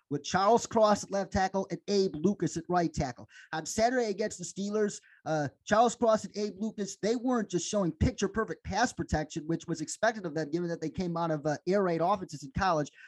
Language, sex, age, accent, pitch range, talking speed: English, male, 30-49, American, 200-290 Hz, 210 wpm